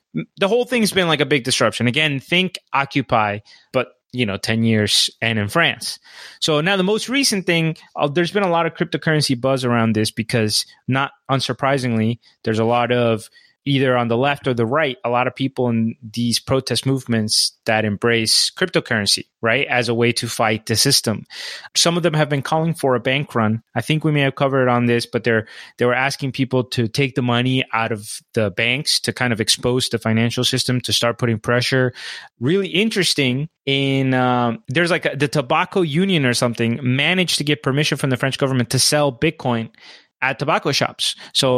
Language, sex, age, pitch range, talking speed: English, male, 20-39, 120-155 Hz, 200 wpm